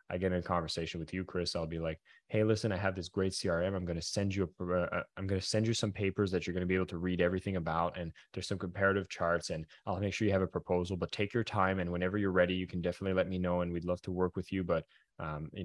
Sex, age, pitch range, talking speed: male, 20-39, 90-105 Hz, 280 wpm